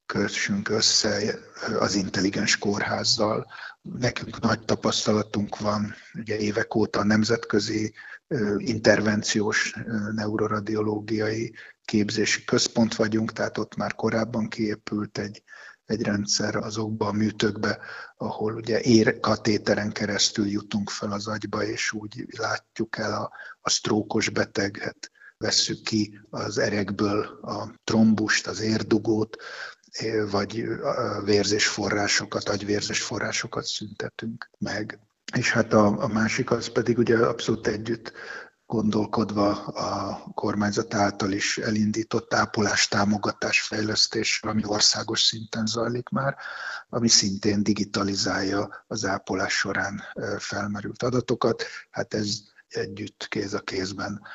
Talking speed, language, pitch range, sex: 110 wpm, Hungarian, 105-110 Hz, male